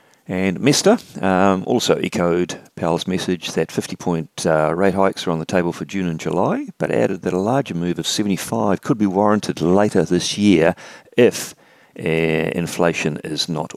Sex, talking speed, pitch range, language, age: male, 170 wpm, 80-100 Hz, English, 40-59